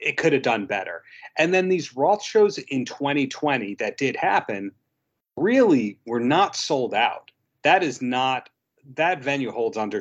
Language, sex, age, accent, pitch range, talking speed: English, male, 40-59, American, 130-180 Hz, 160 wpm